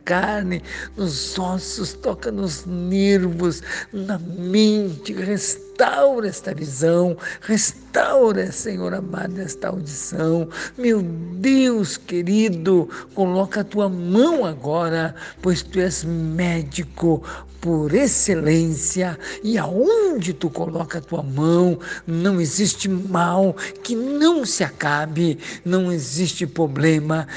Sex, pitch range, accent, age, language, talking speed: male, 155-185 Hz, Brazilian, 60-79, Portuguese, 105 wpm